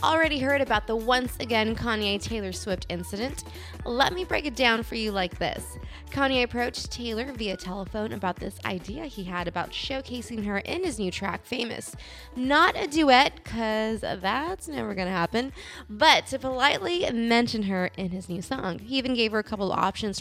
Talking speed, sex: 180 wpm, female